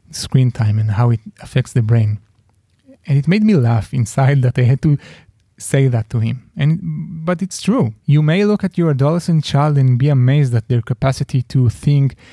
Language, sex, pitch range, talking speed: English, male, 115-140 Hz, 200 wpm